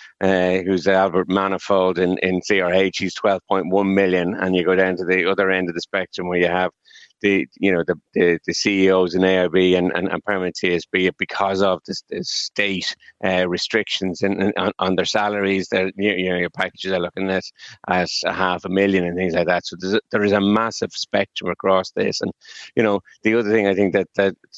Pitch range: 90-100 Hz